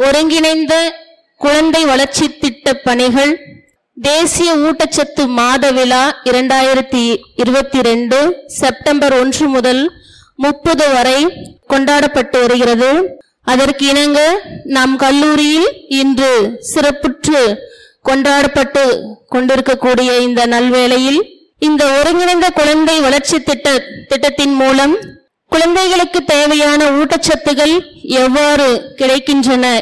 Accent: native